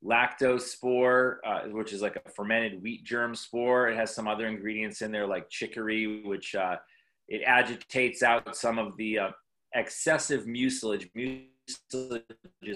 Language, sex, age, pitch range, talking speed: English, male, 30-49, 105-125 Hz, 150 wpm